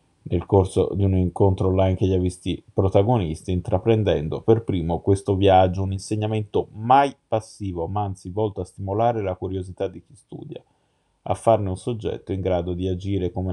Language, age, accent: Italian, 20-39, native